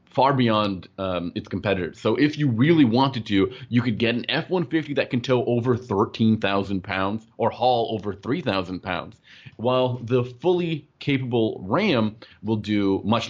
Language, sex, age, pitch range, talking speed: English, male, 30-49, 95-125 Hz, 160 wpm